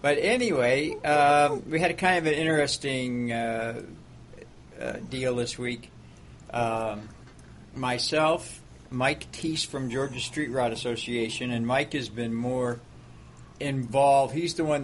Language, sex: English, male